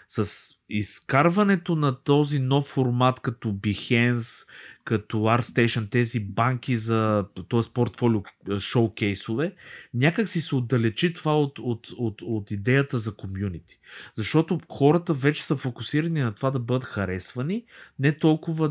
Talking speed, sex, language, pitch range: 130 wpm, male, Bulgarian, 110-135 Hz